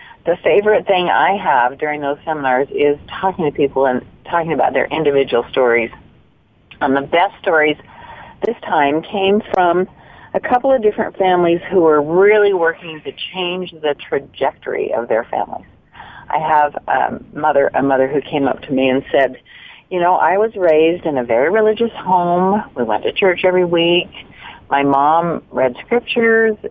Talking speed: 165 wpm